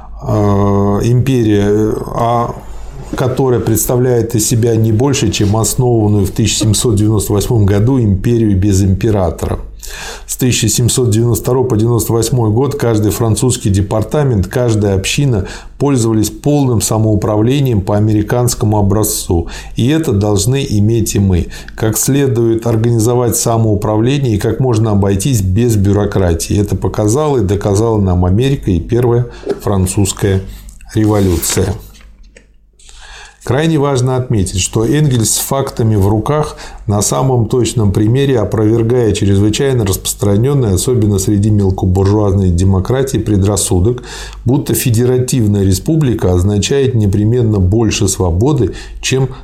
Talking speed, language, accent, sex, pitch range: 105 wpm, Russian, native, male, 100-120 Hz